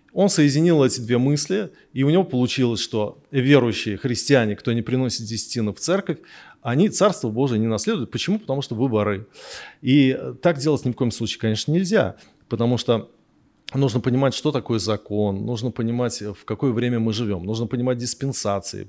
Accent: native